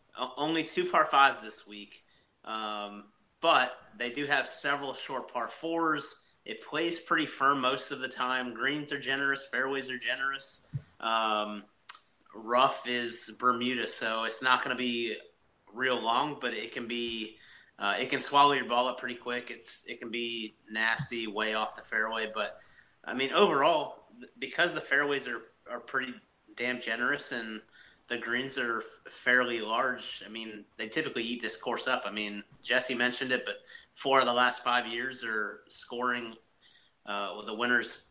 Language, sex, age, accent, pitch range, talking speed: English, male, 30-49, American, 115-135 Hz, 165 wpm